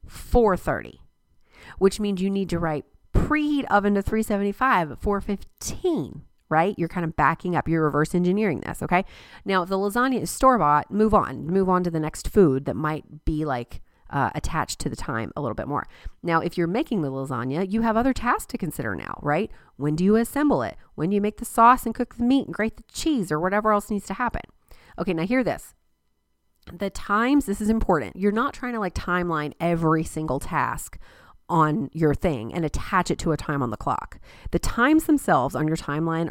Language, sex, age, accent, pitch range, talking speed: English, female, 30-49, American, 155-215 Hz, 210 wpm